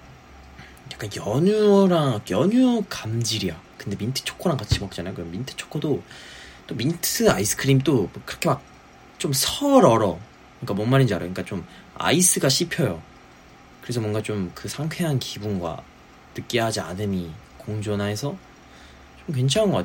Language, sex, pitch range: Korean, male, 75-120 Hz